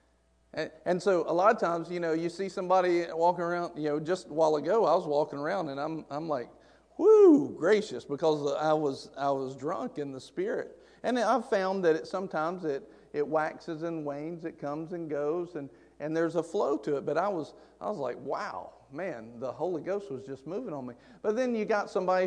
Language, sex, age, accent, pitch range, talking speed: English, male, 50-69, American, 160-235 Hz, 220 wpm